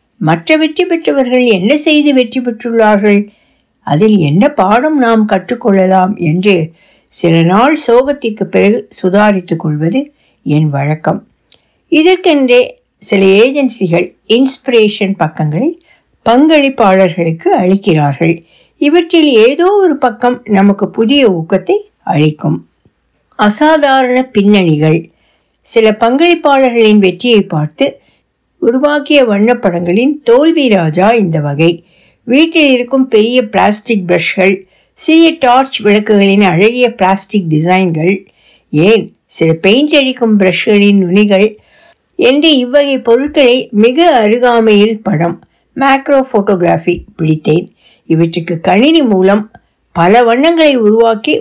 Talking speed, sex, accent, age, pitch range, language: 75 wpm, female, native, 60-79, 185-265 Hz, Tamil